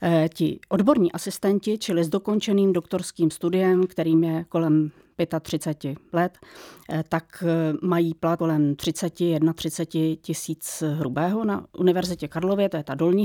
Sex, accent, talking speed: female, Czech, 130 wpm